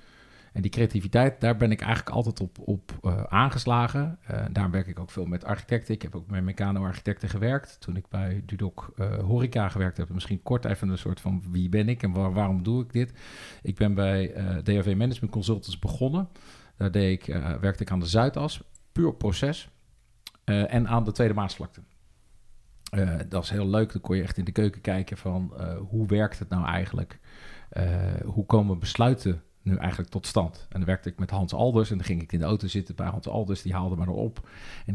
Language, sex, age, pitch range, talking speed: English, male, 50-69, 95-110 Hz, 210 wpm